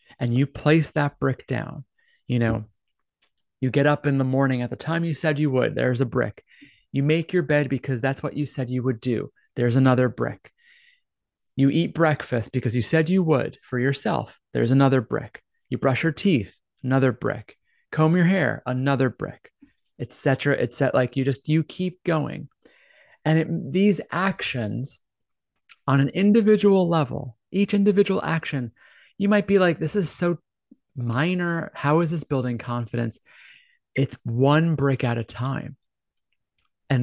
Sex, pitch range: male, 125-155 Hz